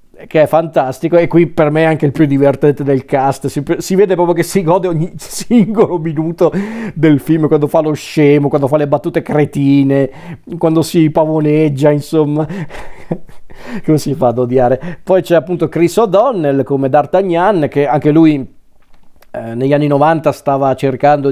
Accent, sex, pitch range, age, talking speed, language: native, male, 135-160 Hz, 40-59, 170 wpm, Italian